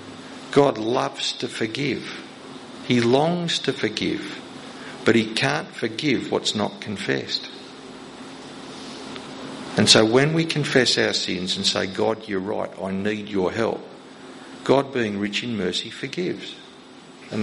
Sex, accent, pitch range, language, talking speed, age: male, Australian, 110-145 Hz, English, 130 wpm, 50-69